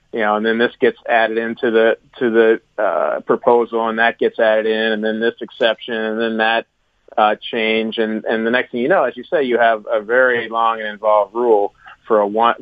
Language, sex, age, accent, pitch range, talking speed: English, male, 40-59, American, 110-120 Hz, 230 wpm